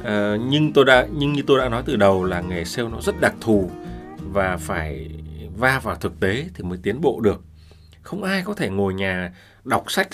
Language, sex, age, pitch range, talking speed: Vietnamese, male, 20-39, 100-135 Hz, 220 wpm